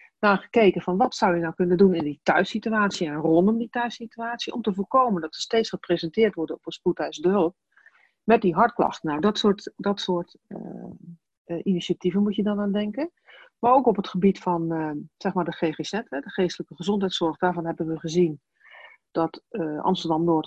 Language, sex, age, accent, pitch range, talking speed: Dutch, female, 40-59, Dutch, 175-215 Hz, 190 wpm